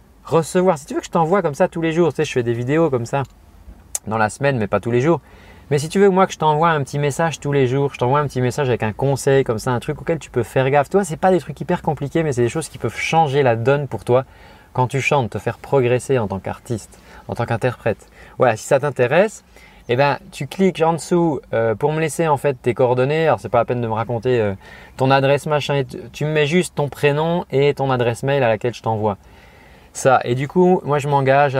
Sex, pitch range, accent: male, 110-145 Hz, French